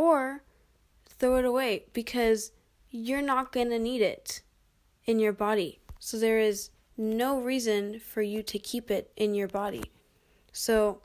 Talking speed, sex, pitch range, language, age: 145 wpm, female, 195-225 Hz, English, 10-29